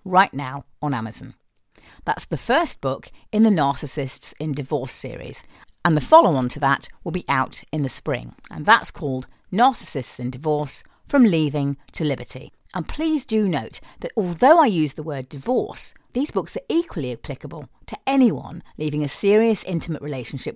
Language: English